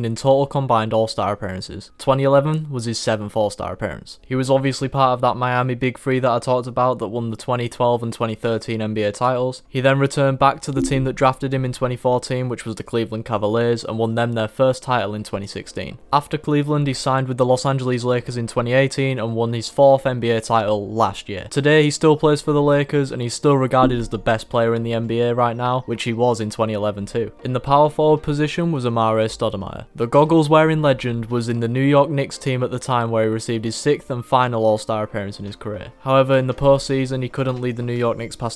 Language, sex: English, male